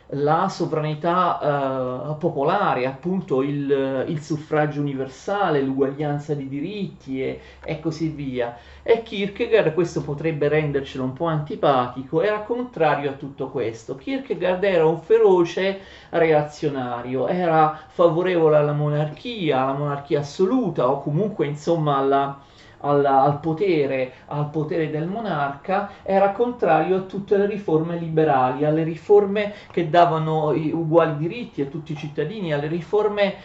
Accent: native